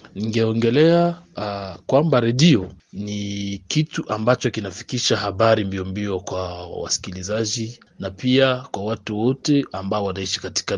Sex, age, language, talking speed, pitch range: male, 30-49, Swahili, 115 wpm, 100-135 Hz